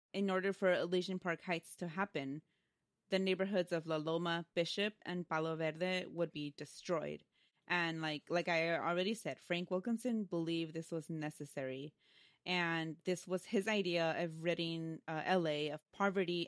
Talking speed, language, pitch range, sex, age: 155 wpm, English, 160-190 Hz, female, 20-39